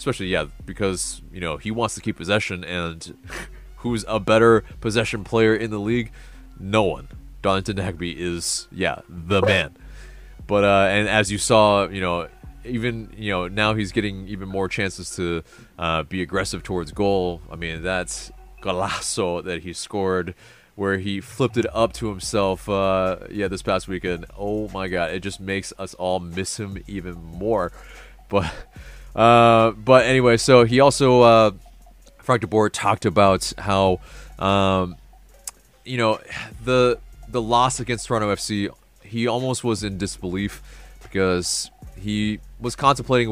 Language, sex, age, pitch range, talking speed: English, male, 20-39, 95-115 Hz, 155 wpm